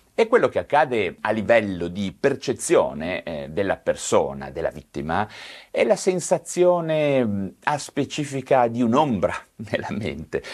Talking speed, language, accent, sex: 125 wpm, Italian, native, male